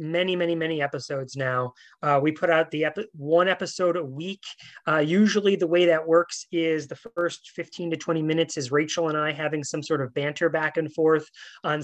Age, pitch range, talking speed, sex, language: 30-49, 150-185 Hz, 205 wpm, male, English